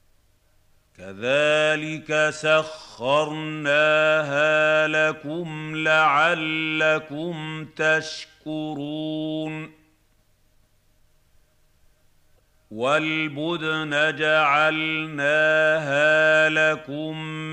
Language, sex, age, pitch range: Arabic, male, 50-69, 145-155 Hz